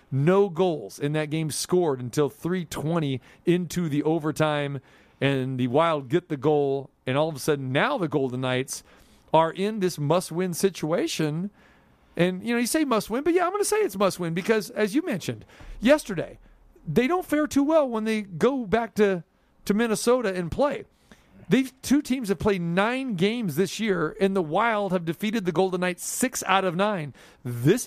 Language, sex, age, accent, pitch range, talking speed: English, male, 40-59, American, 155-235 Hz, 185 wpm